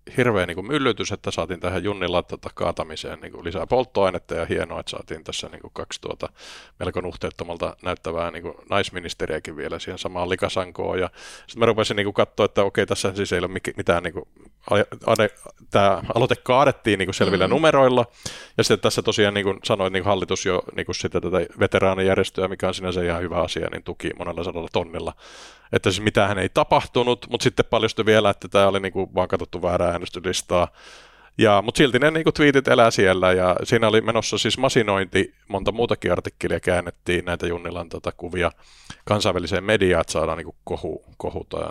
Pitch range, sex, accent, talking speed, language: 90-105 Hz, male, native, 160 wpm, Finnish